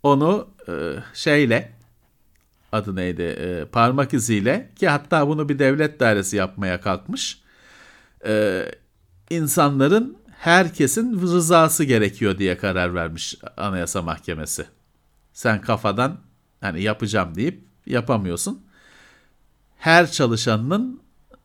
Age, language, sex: 50-69, Turkish, male